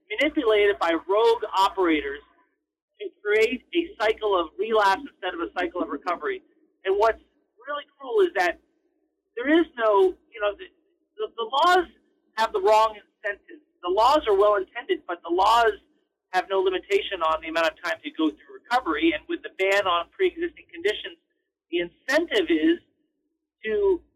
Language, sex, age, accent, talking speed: English, male, 40-59, American, 165 wpm